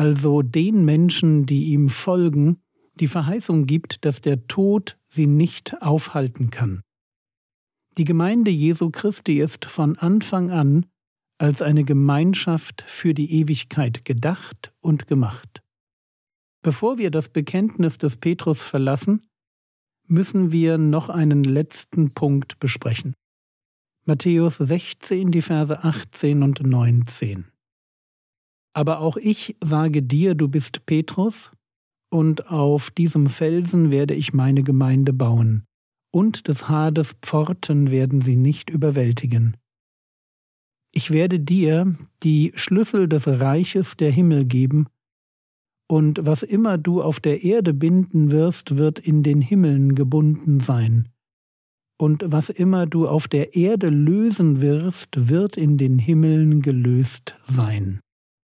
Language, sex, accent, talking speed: German, male, German, 125 wpm